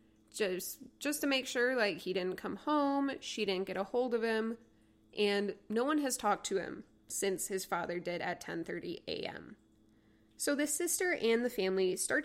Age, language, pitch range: 20-39, English, 185-230 Hz